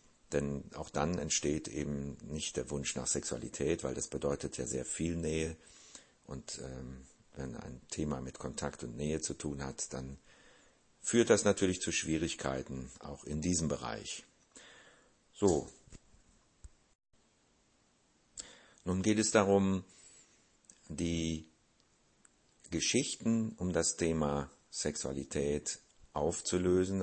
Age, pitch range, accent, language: 50-69, 70-85 Hz, German, German